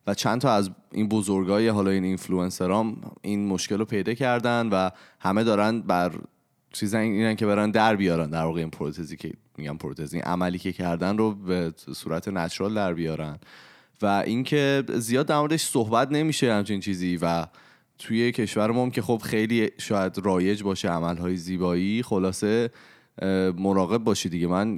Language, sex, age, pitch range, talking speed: Persian, male, 20-39, 95-120 Hz, 155 wpm